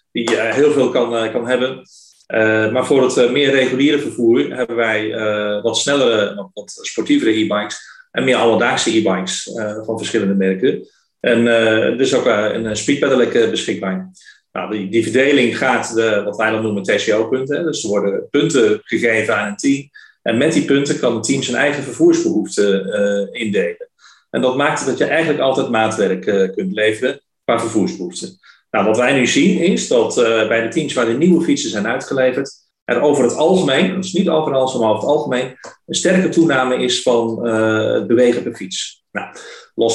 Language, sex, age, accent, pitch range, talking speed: Dutch, male, 40-59, Dutch, 110-145 Hz, 185 wpm